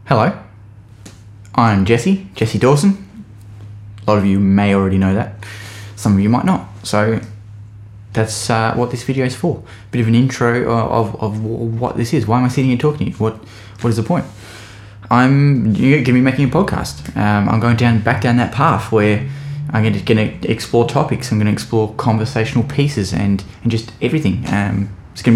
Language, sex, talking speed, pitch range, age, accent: English, male, 195 wpm, 105-125 Hz, 10-29, Australian